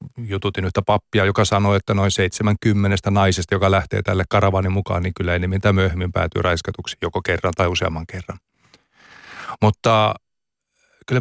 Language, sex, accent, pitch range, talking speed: Finnish, male, native, 95-110 Hz, 150 wpm